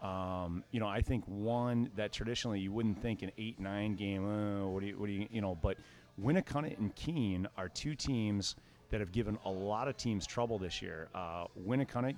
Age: 30-49